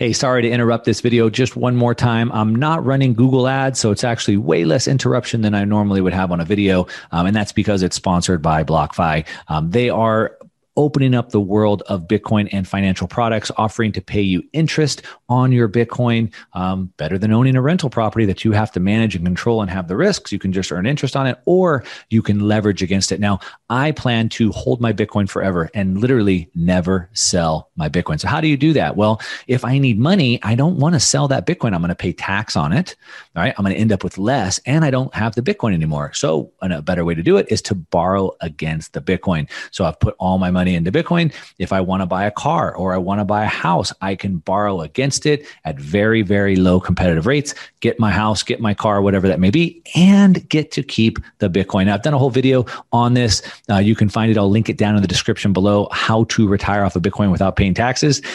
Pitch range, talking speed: 95-120 Hz, 240 wpm